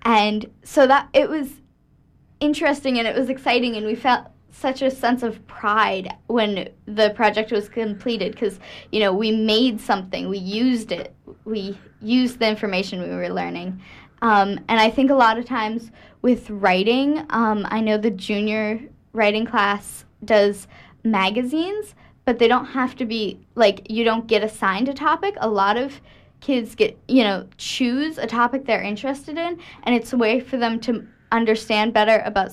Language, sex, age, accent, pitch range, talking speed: English, female, 10-29, American, 205-250 Hz, 175 wpm